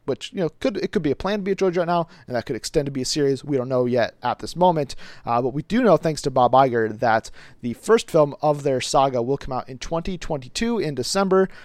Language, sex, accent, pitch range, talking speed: English, male, American, 120-170 Hz, 275 wpm